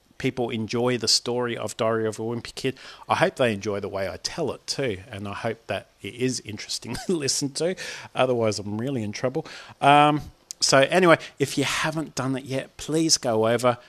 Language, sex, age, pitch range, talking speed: English, male, 40-59, 115-150 Hz, 205 wpm